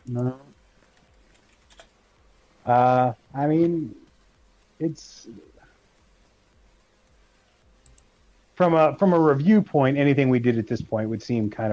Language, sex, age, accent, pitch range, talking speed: English, male, 30-49, American, 100-120 Hz, 100 wpm